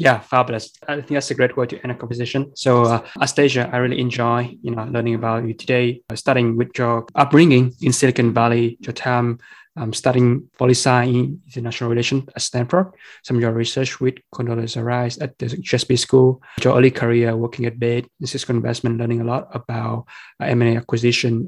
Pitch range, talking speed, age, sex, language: 120-130 Hz, 190 wpm, 20-39, male, English